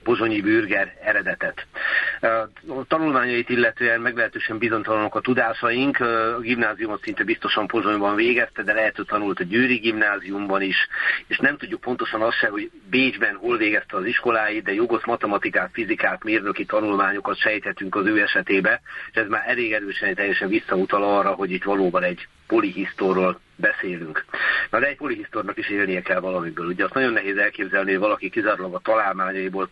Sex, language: male, Hungarian